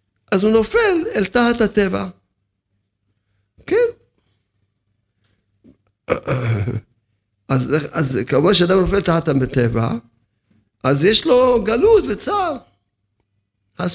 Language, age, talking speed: Hebrew, 50-69, 90 wpm